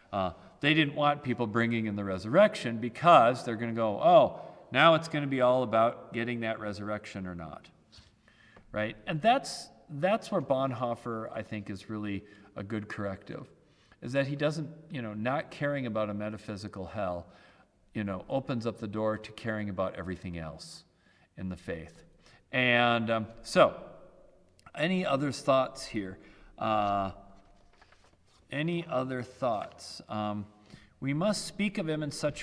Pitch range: 105-135 Hz